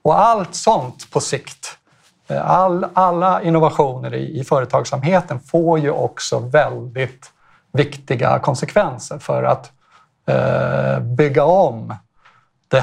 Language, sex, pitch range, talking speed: Swedish, male, 130-160 Hz, 110 wpm